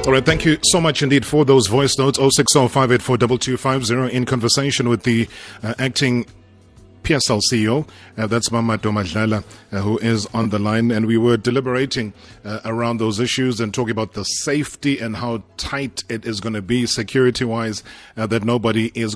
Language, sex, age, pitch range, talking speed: English, male, 30-49, 105-125 Hz, 175 wpm